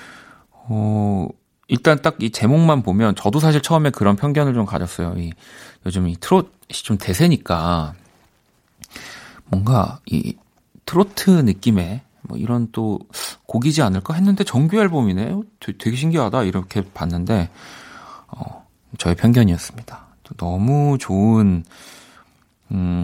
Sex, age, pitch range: male, 40-59, 90-130 Hz